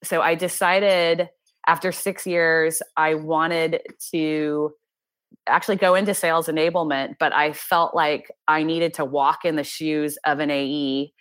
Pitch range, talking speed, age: 145-165 Hz, 150 wpm, 20-39